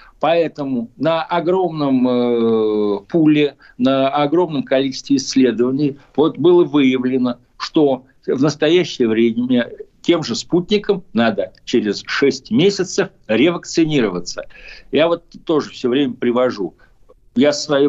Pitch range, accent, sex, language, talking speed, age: 125-180 Hz, native, male, Russian, 105 wpm, 60-79